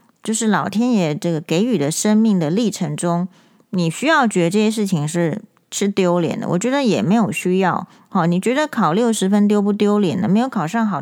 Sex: female